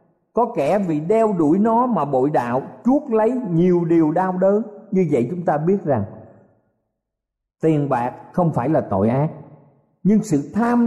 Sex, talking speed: male, 170 wpm